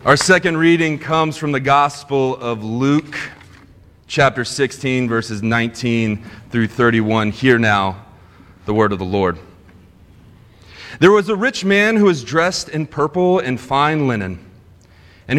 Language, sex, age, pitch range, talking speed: English, male, 30-49, 110-165 Hz, 140 wpm